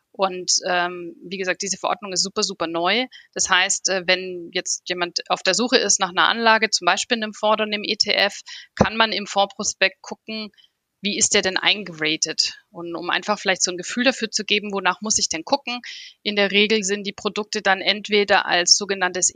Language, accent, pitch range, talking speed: German, German, 185-220 Hz, 205 wpm